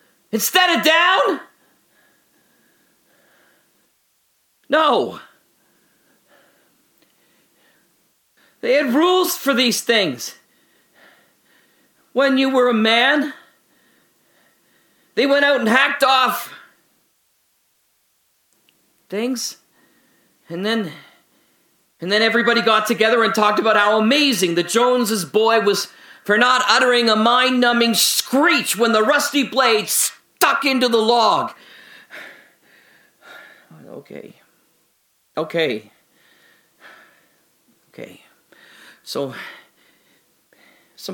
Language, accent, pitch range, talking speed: English, American, 215-270 Hz, 85 wpm